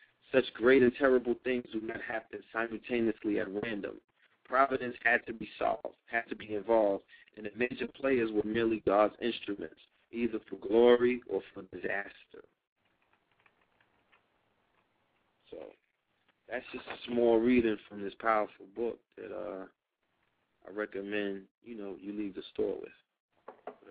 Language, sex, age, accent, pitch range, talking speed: English, male, 40-59, American, 105-120 Hz, 140 wpm